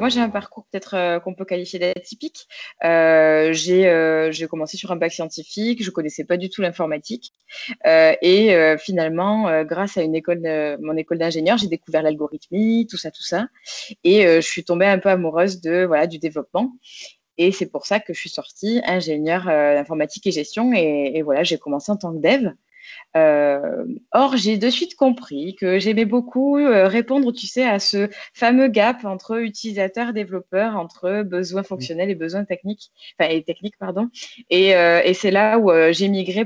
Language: French